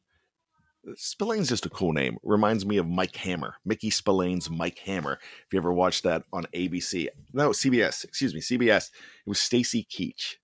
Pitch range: 115-155 Hz